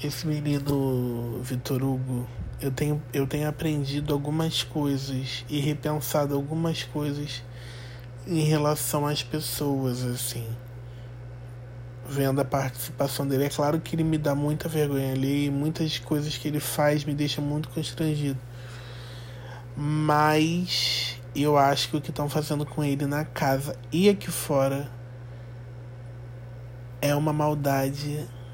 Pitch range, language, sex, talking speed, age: 120-150 Hz, Portuguese, male, 125 wpm, 20-39